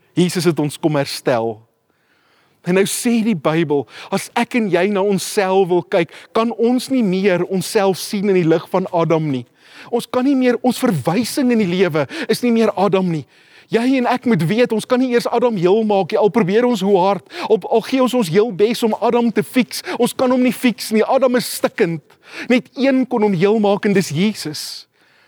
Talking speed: 210 wpm